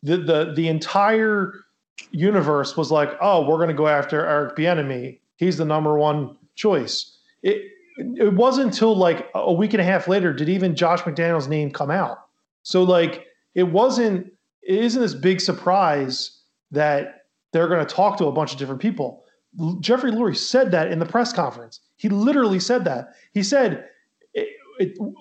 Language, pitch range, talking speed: English, 160-225 Hz, 175 wpm